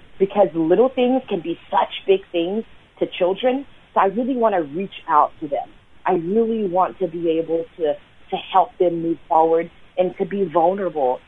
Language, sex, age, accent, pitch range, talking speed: English, female, 30-49, American, 165-195 Hz, 185 wpm